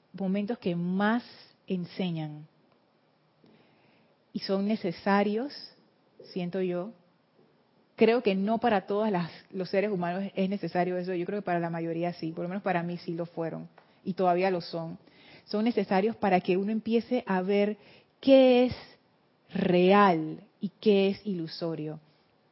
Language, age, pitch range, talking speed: Spanish, 30-49, 175-215 Hz, 145 wpm